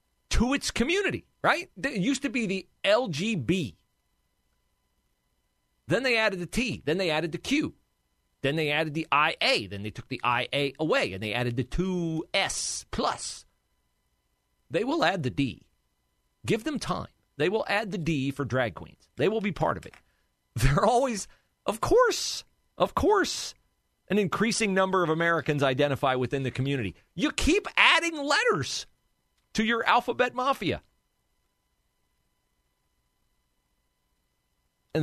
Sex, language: male, English